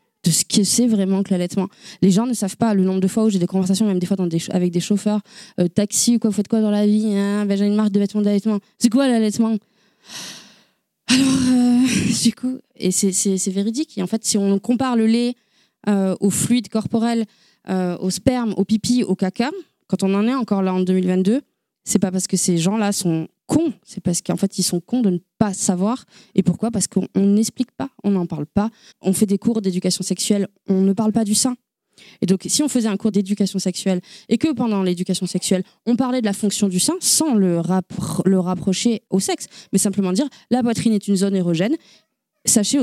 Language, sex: French, female